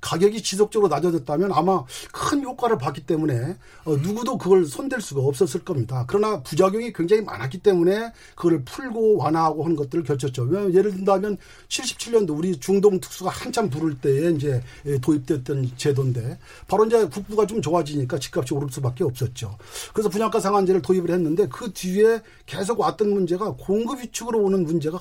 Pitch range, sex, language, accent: 145-210 Hz, male, Korean, native